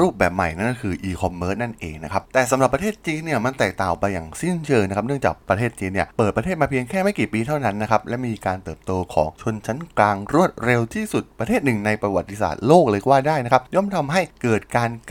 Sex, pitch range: male, 95-140 Hz